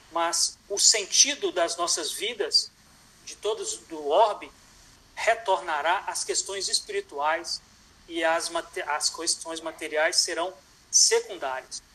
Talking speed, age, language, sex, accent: 110 wpm, 60-79, Portuguese, male, Brazilian